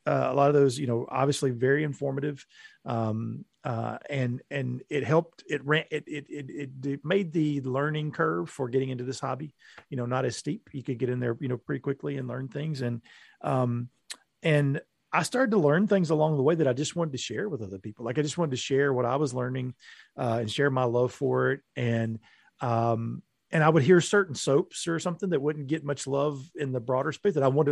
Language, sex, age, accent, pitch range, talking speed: English, male, 40-59, American, 125-160 Hz, 230 wpm